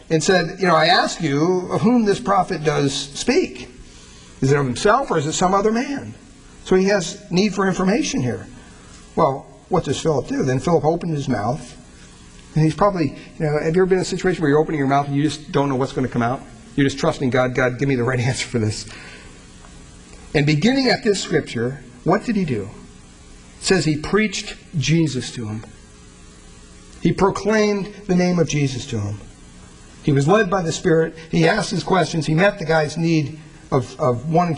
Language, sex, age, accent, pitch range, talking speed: English, male, 60-79, American, 115-180 Hz, 210 wpm